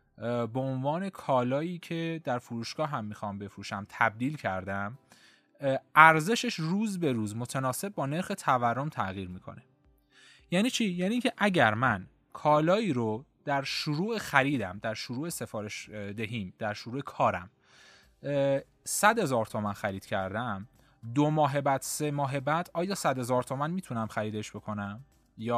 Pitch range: 115-155 Hz